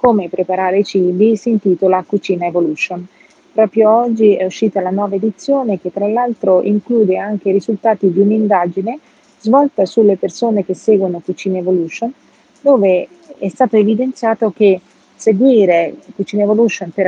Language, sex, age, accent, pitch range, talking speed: Portuguese, female, 40-59, Italian, 185-230 Hz, 135 wpm